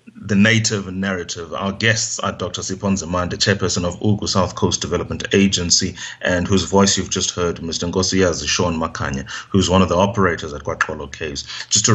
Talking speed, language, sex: 185 wpm, English, male